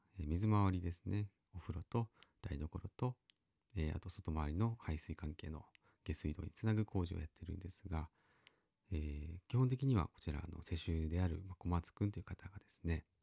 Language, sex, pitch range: Japanese, male, 80-105 Hz